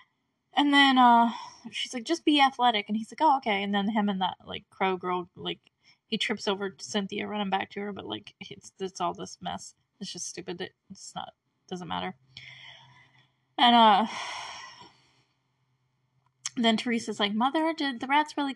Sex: female